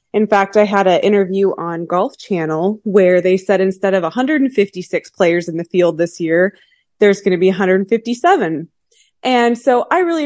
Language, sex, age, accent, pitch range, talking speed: English, female, 20-39, American, 185-240 Hz, 175 wpm